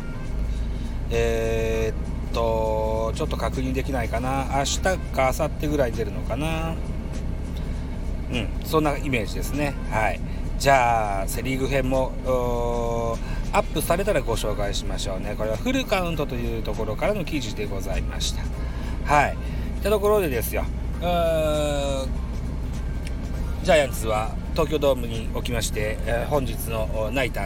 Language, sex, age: Japanese, male, 40-59